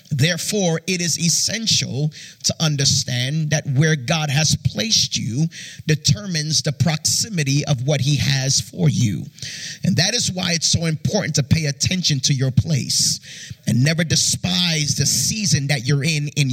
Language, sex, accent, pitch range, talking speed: English, male, American, 145-180 Hz, 155 wpm